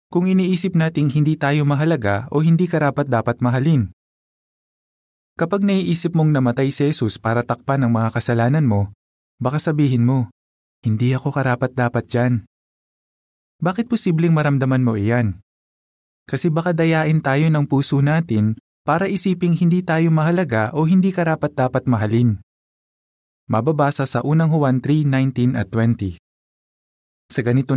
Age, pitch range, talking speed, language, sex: 20-39, 115-160 Hz, 135 wpm, Filipino, male